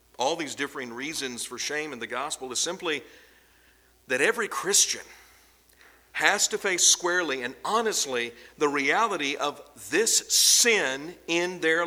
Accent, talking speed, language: American, 135 wpm, English